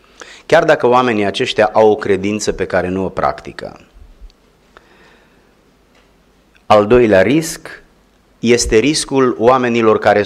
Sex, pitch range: male, 100-130 Hz